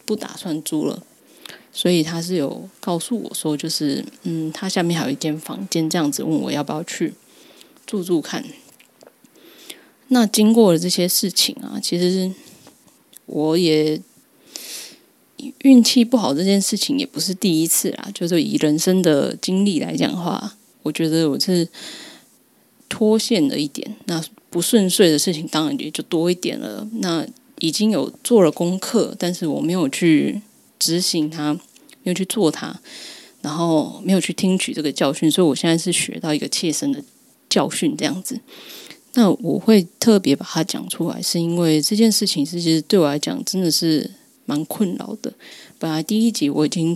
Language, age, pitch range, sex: Chinese, 20-39, 160-225 Hz, female